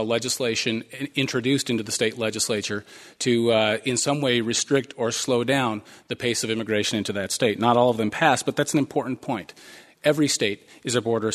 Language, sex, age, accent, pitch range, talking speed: English, male, 40-59, American, 125-165 Hz, 195 wpm